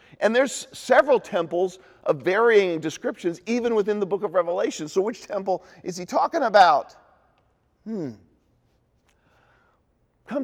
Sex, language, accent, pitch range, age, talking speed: male, English, American, 160-225 Hz, 40-59, 125 wpm